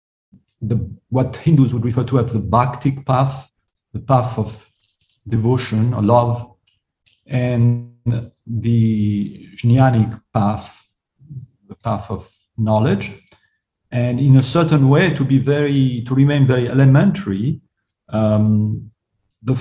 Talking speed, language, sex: 115 wpm, English, male